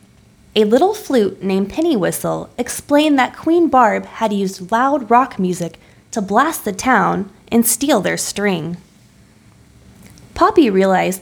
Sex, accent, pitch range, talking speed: female, American, 180-245 Hz, 135 wpm